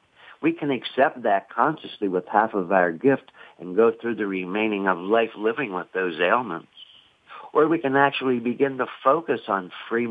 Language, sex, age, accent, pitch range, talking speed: English, male, 60-79, American, 110-120 Hz, 180 wpm